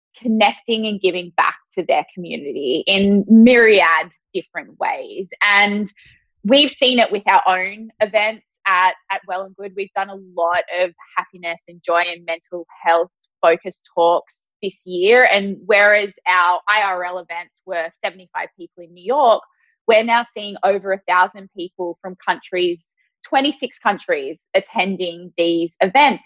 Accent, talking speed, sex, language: Australian, 145 wpm, female, English